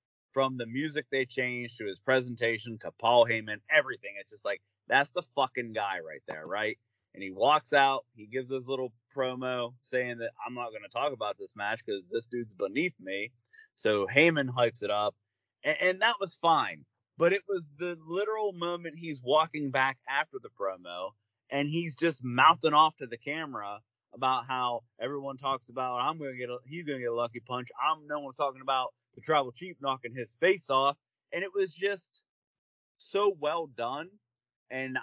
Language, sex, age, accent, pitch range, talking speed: English, male, 30-49, American, 120-155 Hz, 195 wpm